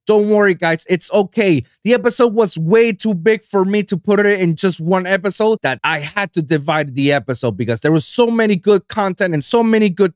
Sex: male